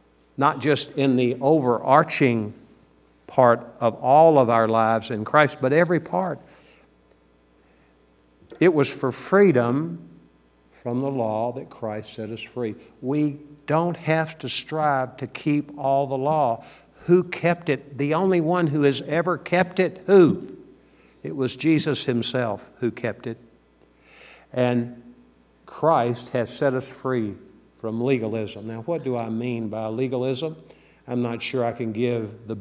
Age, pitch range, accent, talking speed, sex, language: 60-79, 115-150 Hz, American, 145 wpm, male, English